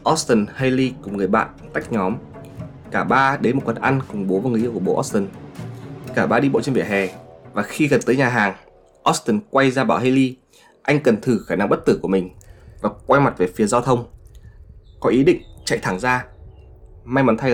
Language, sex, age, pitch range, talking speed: Vietnamese, male, 20-39, 90-125 Hz, 220 wpm